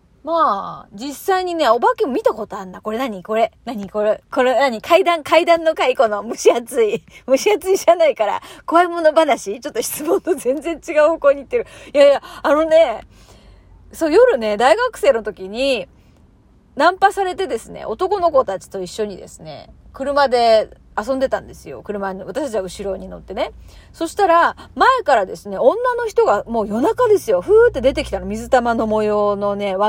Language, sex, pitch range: Japanese, female, 235-385 Hz